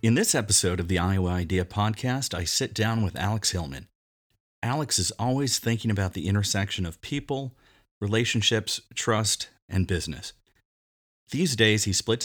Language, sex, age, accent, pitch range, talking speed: English, male, 40-59, American, 95-115 Hz, 150 wpm